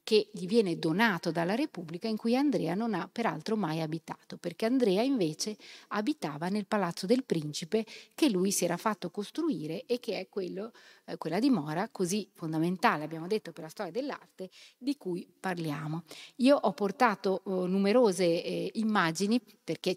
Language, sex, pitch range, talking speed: Italian, female, 165-220 Hz, 160 wpm